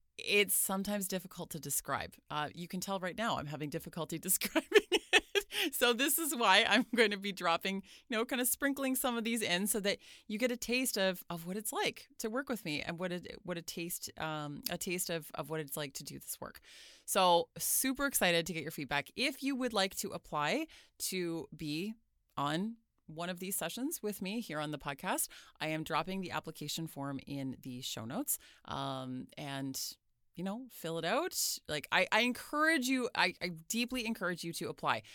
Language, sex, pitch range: English, female, 155-215 Hz